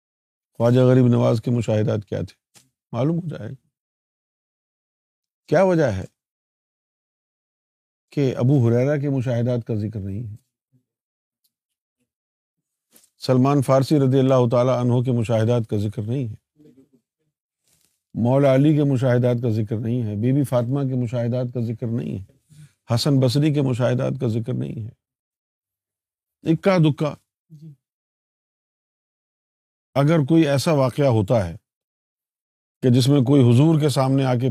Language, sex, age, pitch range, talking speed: Urdu, male, 50-69, 115-140 Hz, 130 wpm